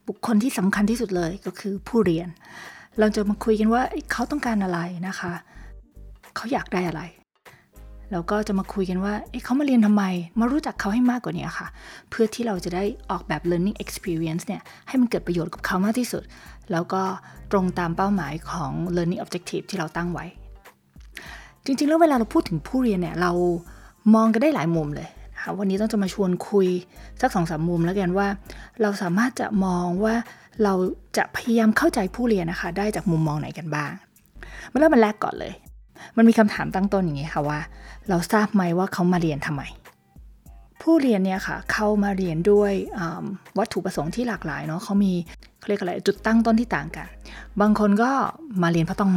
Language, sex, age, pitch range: English, female, 20-39, 175-220 Hz